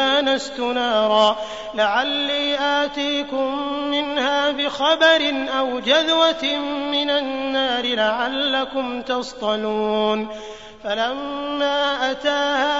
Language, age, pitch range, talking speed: Arabic, 30-49, 245-285 Hz, 60 wpm